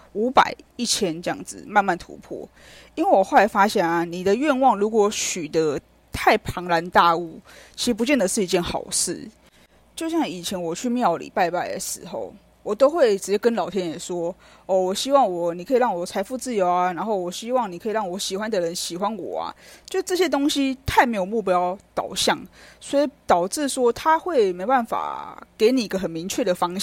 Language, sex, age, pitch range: Chinese, female, 20-39, 180-265 Hz